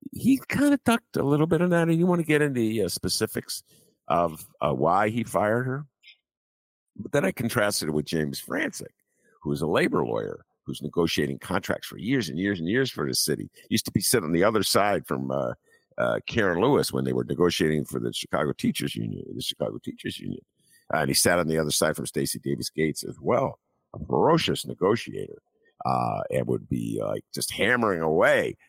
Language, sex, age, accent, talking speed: English, male, 50-69, American, 210 wpm